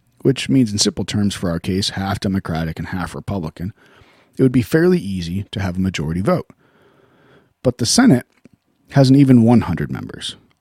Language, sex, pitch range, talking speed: English, male, 95-130 Hz, 170 wpm